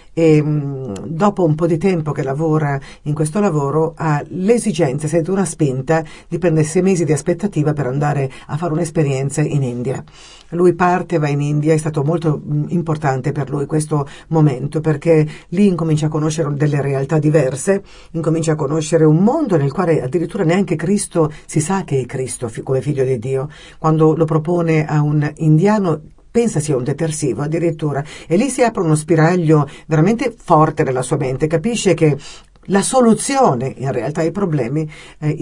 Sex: female